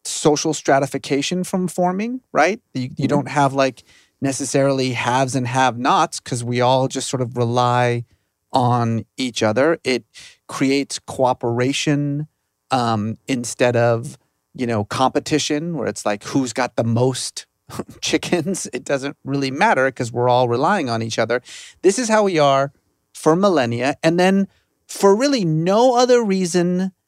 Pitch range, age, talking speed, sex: 120-165 Hz, 30-49, 145 wpm, male